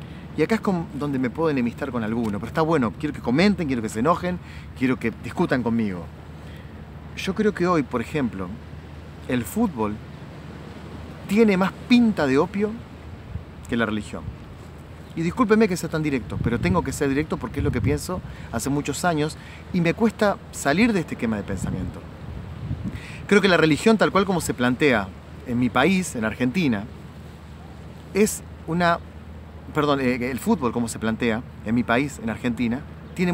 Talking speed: 175 wpm